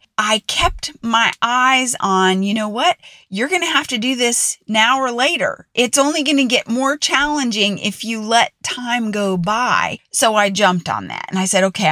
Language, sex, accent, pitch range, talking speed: English, female, American, 195-255 Hz, 200 wpm